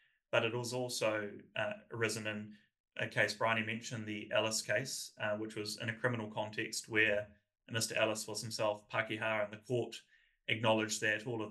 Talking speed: 175 wpm